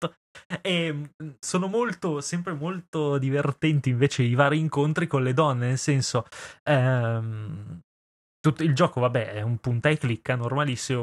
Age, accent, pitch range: 20-39, native, 125-150 Hz